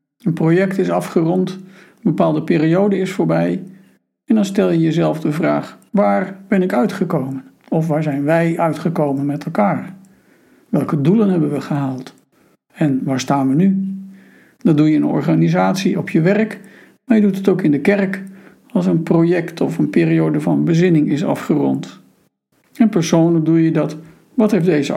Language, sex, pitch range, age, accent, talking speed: Dutch, male, 150-195 Hz, 60-79, Dutch, 175 wpm